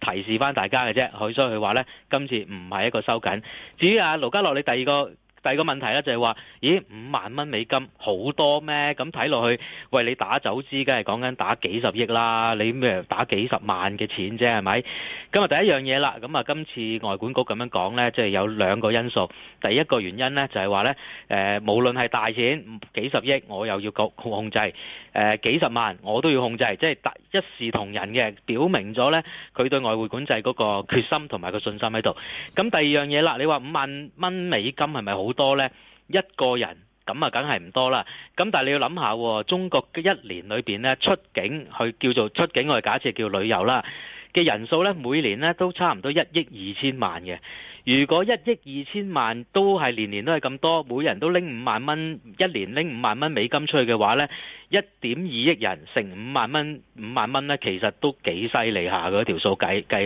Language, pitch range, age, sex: Chinese, 110-150 Hz, 30-49, male